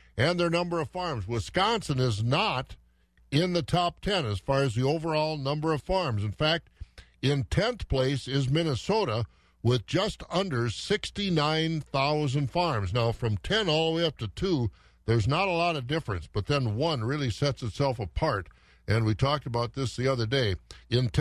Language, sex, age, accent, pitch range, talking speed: English, male, 50-69, American, 115-165 Hz, 180 wpm